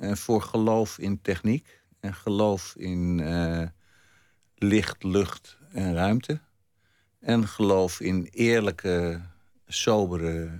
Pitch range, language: 85-100 Hz, Dutch